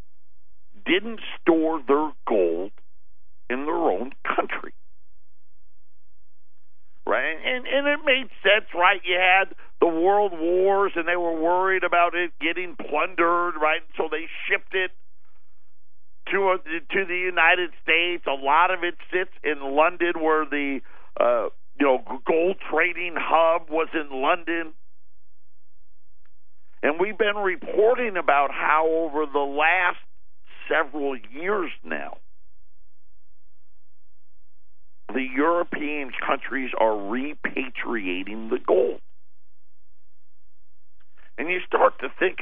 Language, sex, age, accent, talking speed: English, male, 50-69, American, 115 wpm